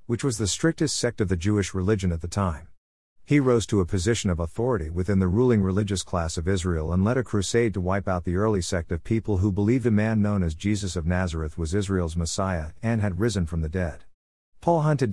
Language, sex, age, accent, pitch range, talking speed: English, male, 50-69, American, 85-115 Hz, 230 wpm